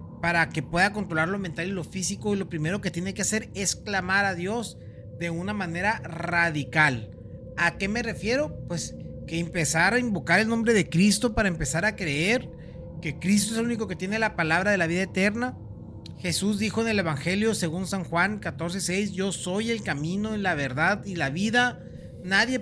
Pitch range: 170-220 Hz